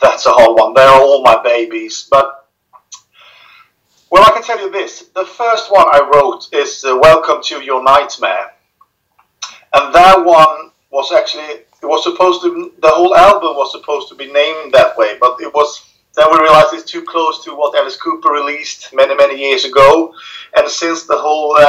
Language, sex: English, male